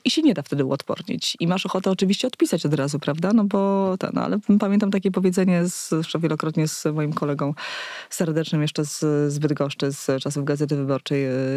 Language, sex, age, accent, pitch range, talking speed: Polish, female, 20-39, native, 155-195 Hz, 175 wpm